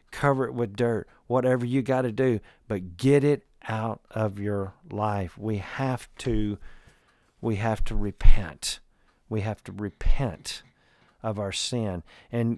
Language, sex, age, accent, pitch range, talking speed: English, male, 50-69, American, 100-120 Hz, 150 wpm